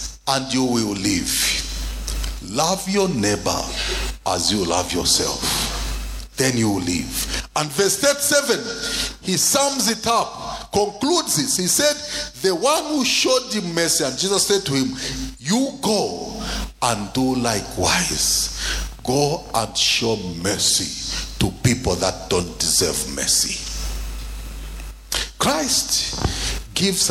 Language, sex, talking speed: English, male, 120 wpm